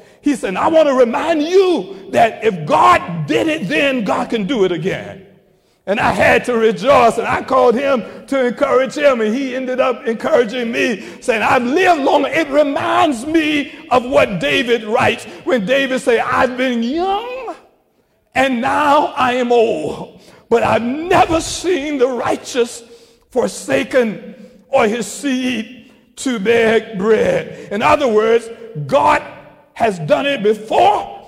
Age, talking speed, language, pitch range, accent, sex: 60-79, 150 wpm, English, 200-265 Hz, American, male